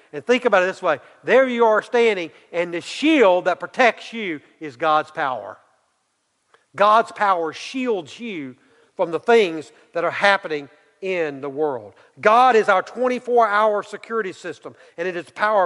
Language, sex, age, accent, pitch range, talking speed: English, male, 40-59, American, 170-235 Hz, 165 wpm